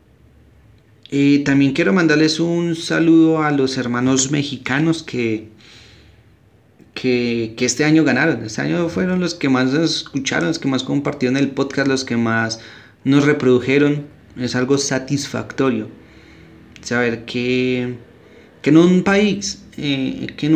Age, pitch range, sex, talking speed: 30-49, 115-155 Hz, male, 135 wpm